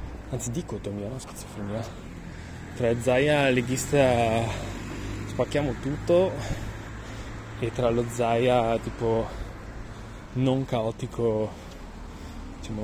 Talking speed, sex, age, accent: 80 wpm, male, 20-39, native